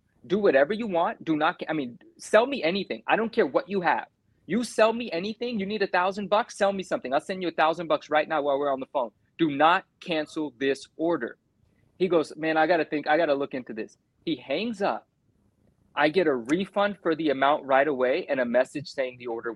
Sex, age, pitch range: male, 30-49, 135-190 Hz